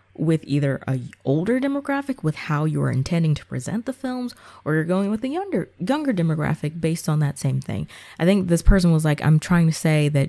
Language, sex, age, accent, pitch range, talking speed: English, female, 20-39, American, 140-185 Hz, 215 wpm